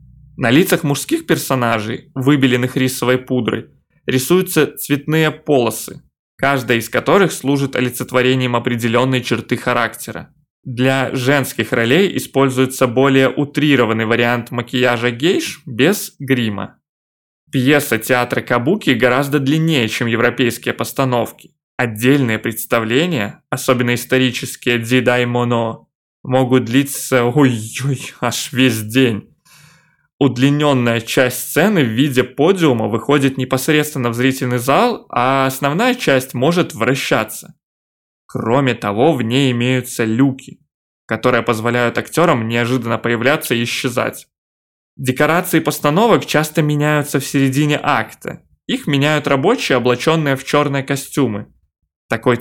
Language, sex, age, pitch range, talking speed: Russian, male, 20-39, 120-145 Hz, 110 wpm